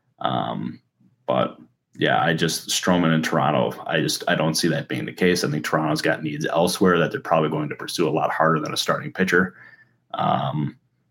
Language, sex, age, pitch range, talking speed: English, male, 20-39, 80-90 Hz, 200 wpm